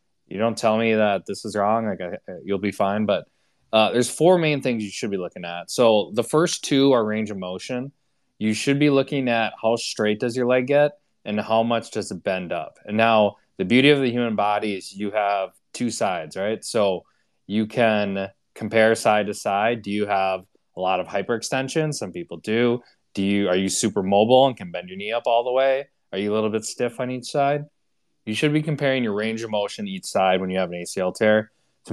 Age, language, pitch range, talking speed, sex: 20-39, English, 100-125 Hz, 230 wpm, male